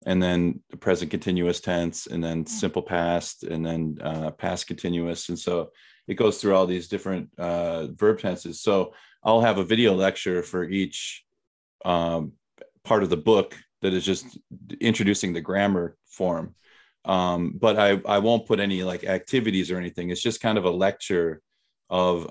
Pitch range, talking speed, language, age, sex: 90-100 Hz, 170 wpm, English, 30-49, male